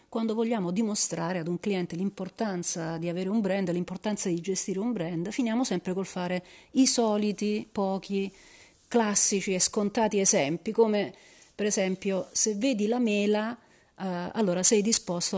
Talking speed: 145 wpm